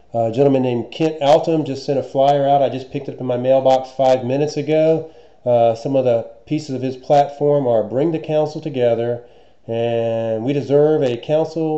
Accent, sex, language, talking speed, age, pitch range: American, male, English, 200 wpm, 40-59, 115-140 Hz